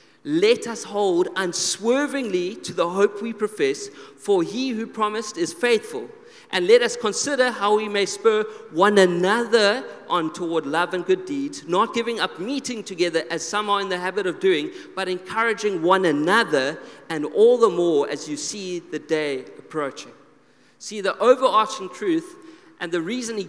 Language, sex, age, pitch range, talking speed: English, male, 40-59, 180-260 Hz, 170 wpm